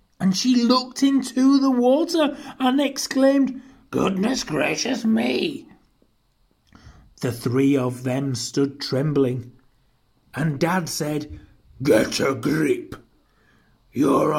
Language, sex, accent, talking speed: English, male, British, 100 wpm